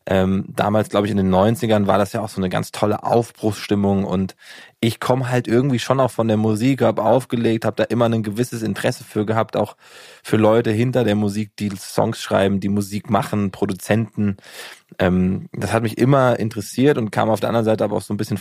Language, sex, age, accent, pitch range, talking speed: German, male, 20-39, German, 100-120 Hz, 215 wpm